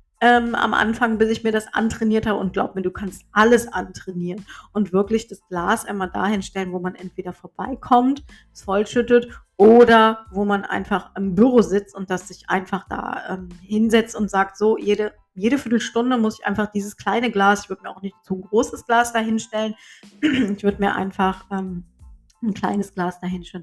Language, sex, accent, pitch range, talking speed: German, female, German, 190-220 Hz, 185 wpm